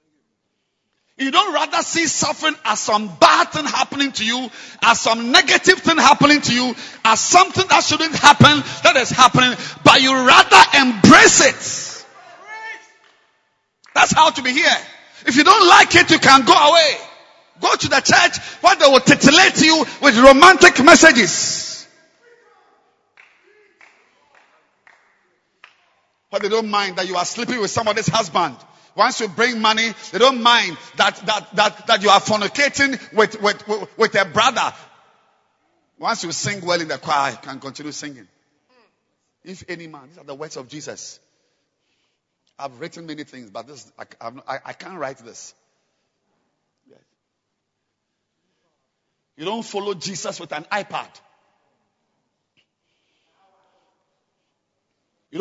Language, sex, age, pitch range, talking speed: English, male, 50-69, 195-305 Hz, 140 wpm